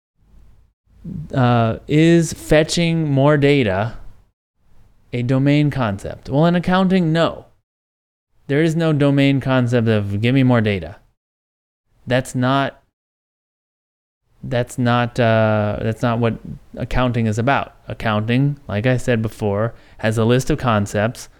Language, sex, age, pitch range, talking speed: English, male, 20-39, 95-130 Hz, 120 wpm